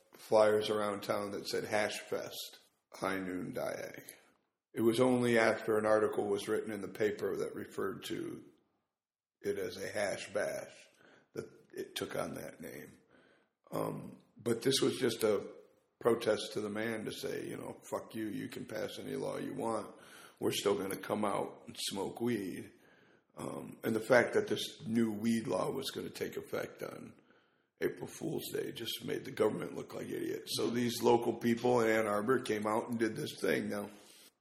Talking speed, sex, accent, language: 185 wpm, male, American, English